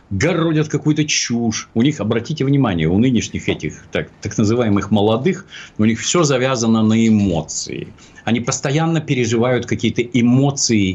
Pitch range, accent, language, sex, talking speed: 100-145 Hz, native, Russian, male, 135 wpm